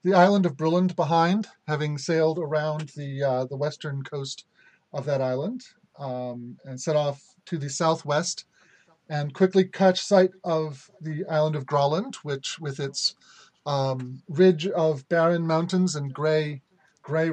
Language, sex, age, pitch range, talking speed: English, male, 40-59, 140-175 Hz, 150 wpm